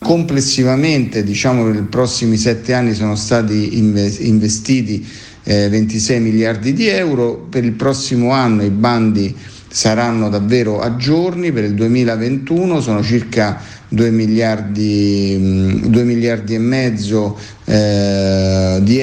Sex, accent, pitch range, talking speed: male, native, 105-125 Hz, 110 wpm